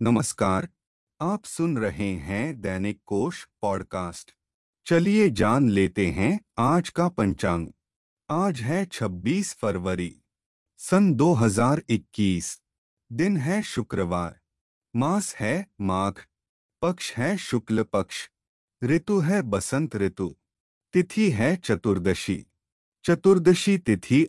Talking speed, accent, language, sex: 100 wpm, native, Hindi, male